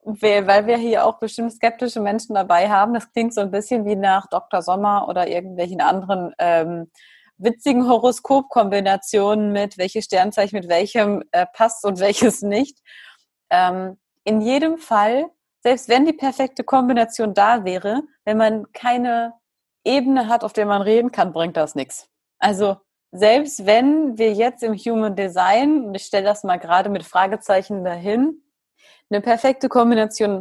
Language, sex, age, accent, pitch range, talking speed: German, female, 30-49, German, 190-235 Hz, 155 wpm